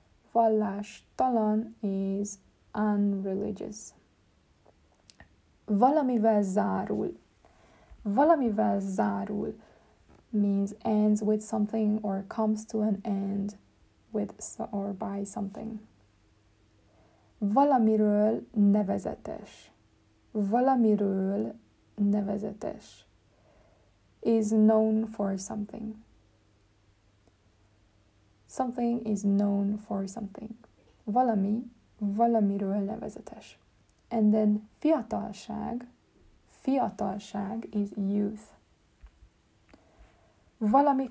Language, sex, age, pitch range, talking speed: Hungarian, female, 20-39, 195-225 Hz, 60 wpm